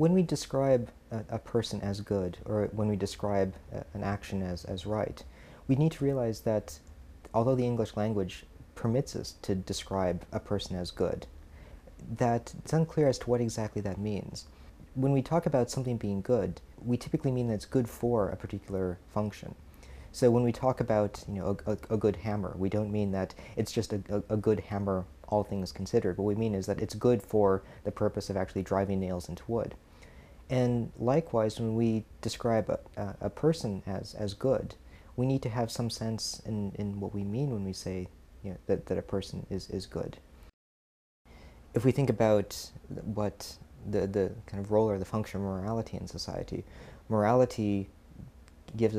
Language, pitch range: English, 95-115 Hz